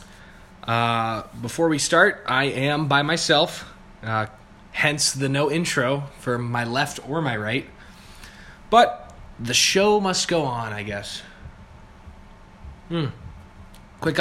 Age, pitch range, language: 20-39, 110-145 Hz, English